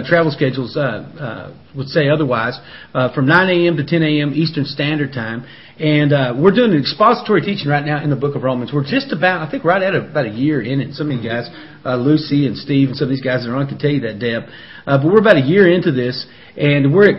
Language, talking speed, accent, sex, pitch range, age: English, 260 wpm, American, male, 135-170 Hz, 40-59